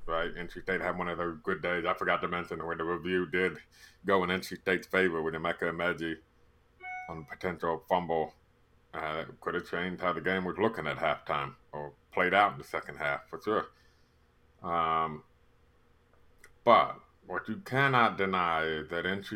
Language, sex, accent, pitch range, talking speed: English, male, American, 80-95 Hz, 180 wpm